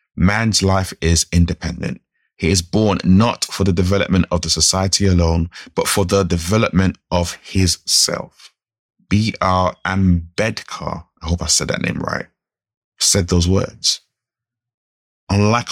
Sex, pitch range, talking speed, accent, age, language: male, 80-100 Hz, 135 wpm, British, 30-49, English